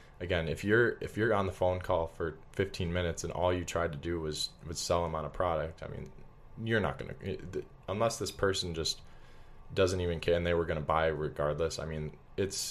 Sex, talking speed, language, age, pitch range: male, 225 wpm, English, 20-39, 80-90 Hz